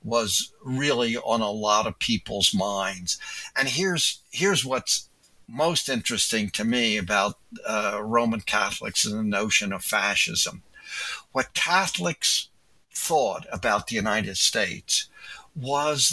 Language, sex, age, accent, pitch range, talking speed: English, male, 60-79, American, 110-135 Hz, 125 wpm